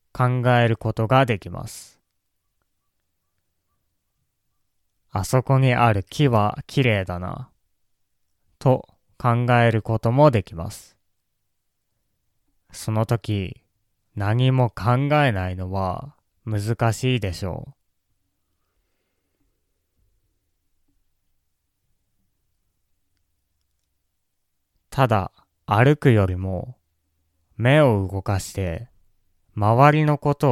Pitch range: 80-120 Hz